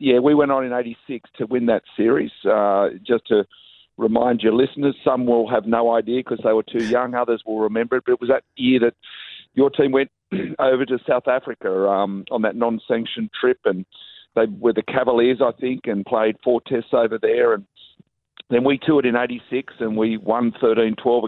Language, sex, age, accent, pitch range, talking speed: English, male, 50-69, Australian, 110-125 Hz, 200 wpm